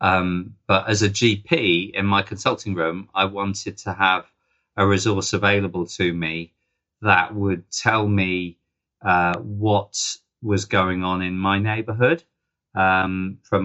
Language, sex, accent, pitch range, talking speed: English, male, British, 85-105 Hz, 140 wpm